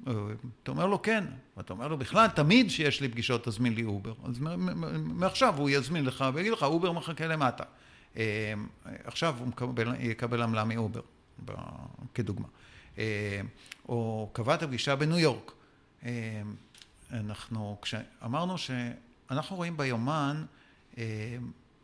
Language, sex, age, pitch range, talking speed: English, male, 50-69, 115-155 Hz, 100 wpm